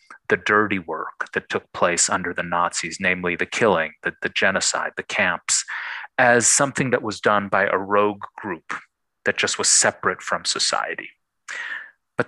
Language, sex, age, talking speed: English, male, 30-49, 160 wpm